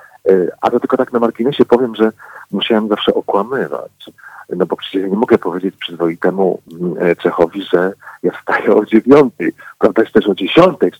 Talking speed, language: 175 wpm, Polish